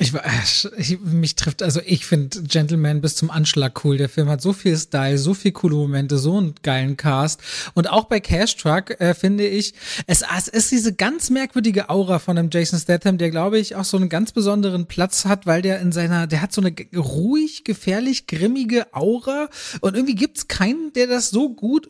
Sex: male